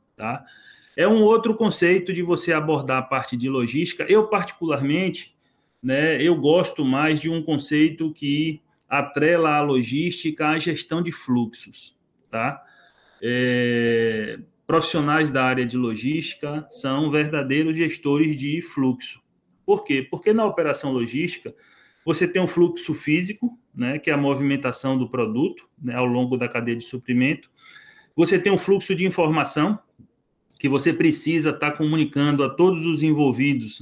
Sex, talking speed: male, 135 wpm